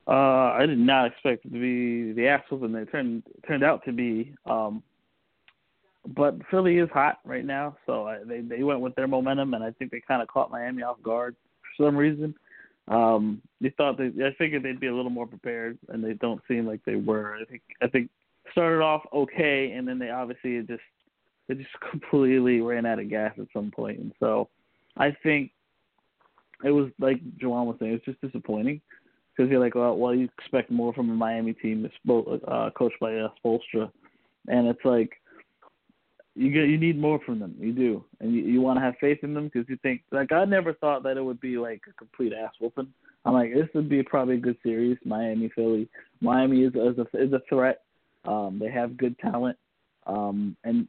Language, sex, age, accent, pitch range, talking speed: English, male, 20-39, American, 115-140 Hz, 210 wpm